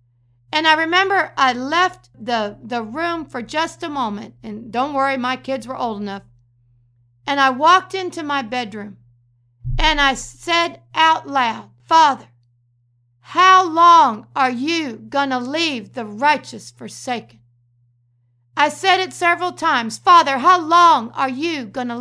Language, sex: English, female